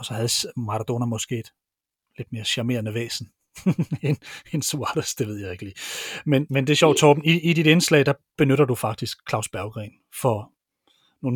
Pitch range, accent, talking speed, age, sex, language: 120-150 Hz, native, 185 wpm, 40-59, male, Danish